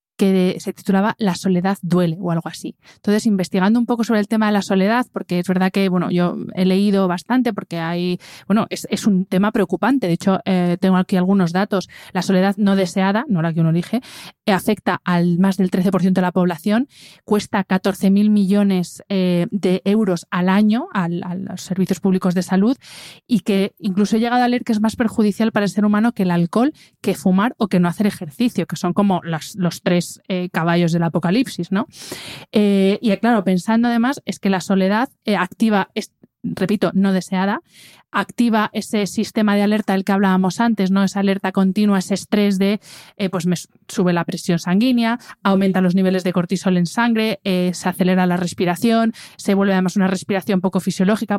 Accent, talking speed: Spanish, 195 wpm